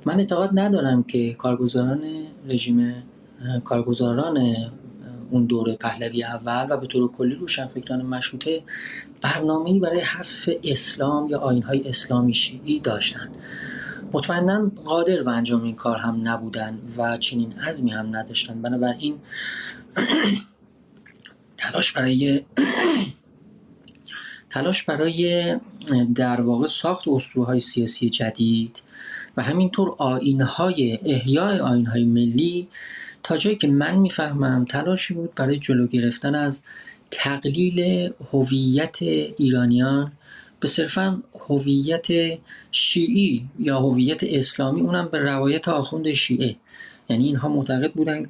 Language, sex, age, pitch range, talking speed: English, male, 30-49, 120-155 Hz, 105 wpm